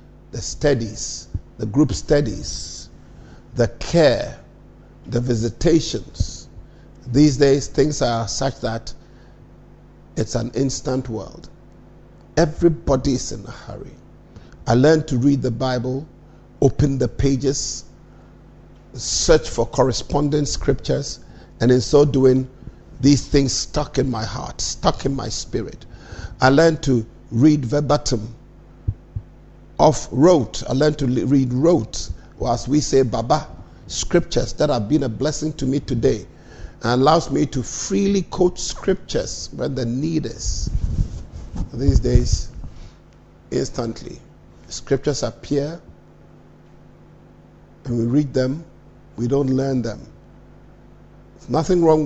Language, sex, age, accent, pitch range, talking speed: English, male, 50-69, Nigerian, 115-145 Hz, 120 wpm